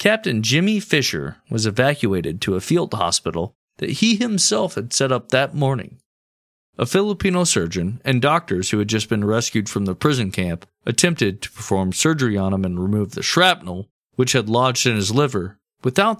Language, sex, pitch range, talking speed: English, male, 100-145 Hz, 180 wpm